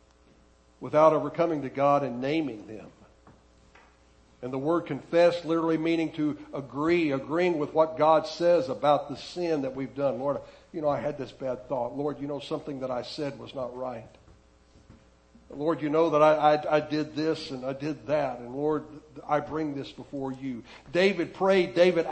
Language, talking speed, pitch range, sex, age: English, 180 wpm, 125-180 Hz, male, 60-79